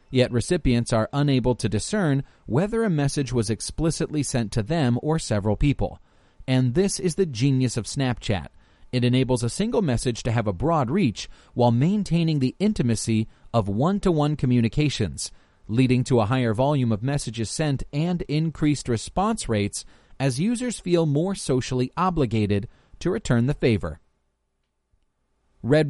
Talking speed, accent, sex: 150 wpm, American, male